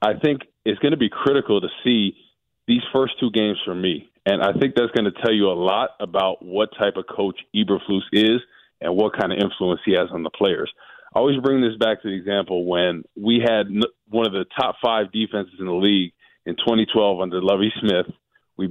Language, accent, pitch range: English, American, 95-115 Hz